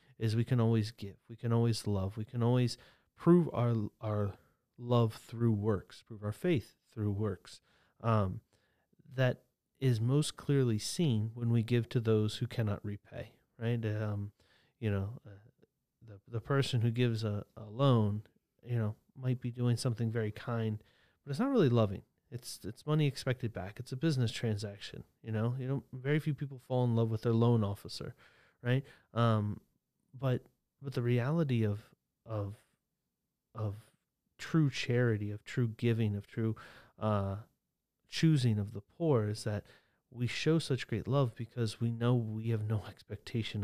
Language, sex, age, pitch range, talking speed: English, male, 30-49, 105-125 Hz, 165 wpm